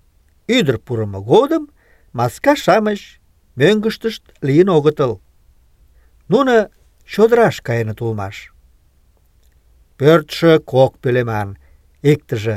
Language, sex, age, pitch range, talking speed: Russian, male, 50-69, 95-155 Hz, 80 wpm